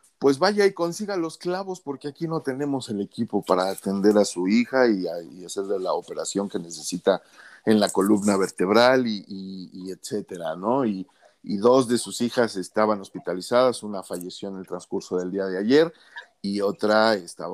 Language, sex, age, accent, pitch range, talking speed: Spanish, male, 40-59, Mexican, 100-135 Hz, 180 wpm